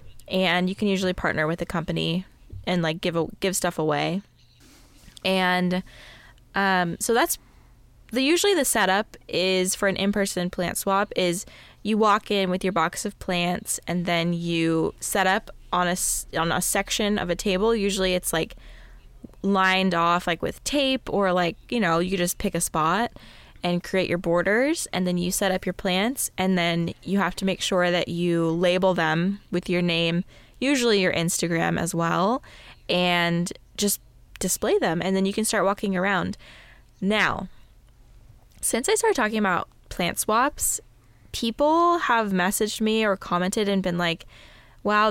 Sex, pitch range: female, 175-205 Hz